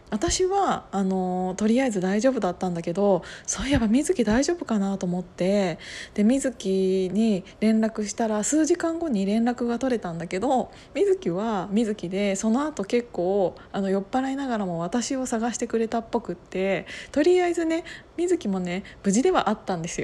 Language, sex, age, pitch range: Japanese, female, 20-39, 195-290 Hz